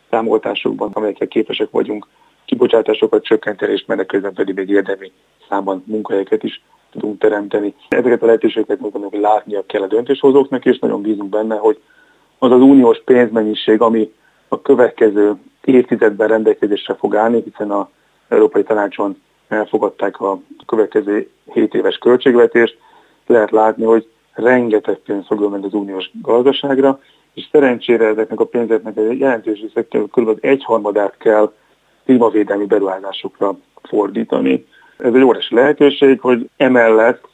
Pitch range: 105-140 Hz